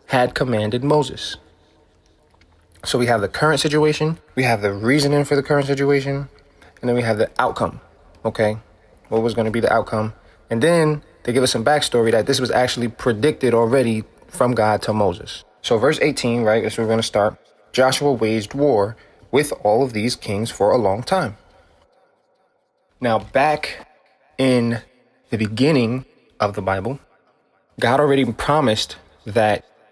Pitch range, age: 110-130 Hz, 20-39